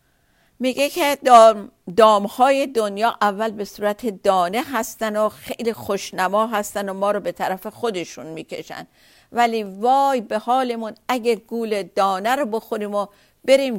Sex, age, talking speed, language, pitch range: female, 50-69, 150 wpm, Persian, 190-230 Hz